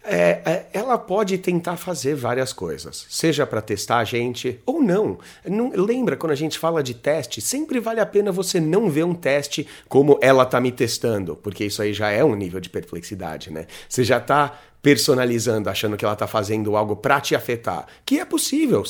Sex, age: male, 30-49